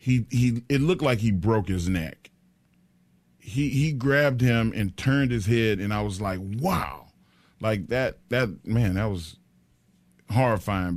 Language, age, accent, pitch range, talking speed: English, 40-59, American, 100-130 Hz, 160 wpm